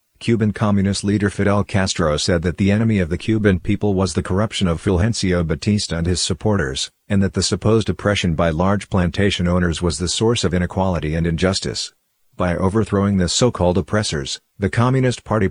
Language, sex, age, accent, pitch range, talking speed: English, male, 50-69, American, 90-105 Hz, 180 wpm